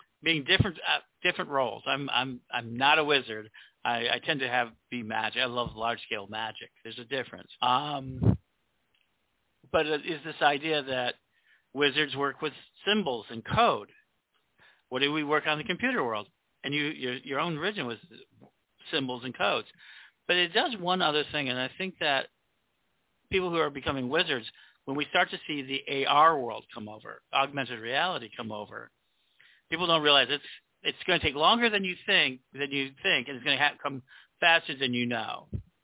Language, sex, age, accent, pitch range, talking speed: English, male, 50-69, American, 125-155 Hz, 190 wpm